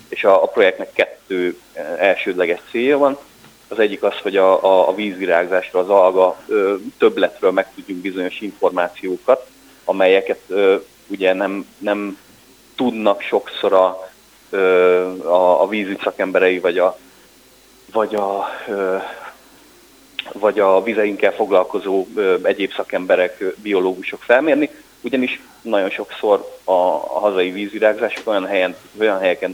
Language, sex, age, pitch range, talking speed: Hungarian, male, 30-49, 95-140 Hz, 120 wpm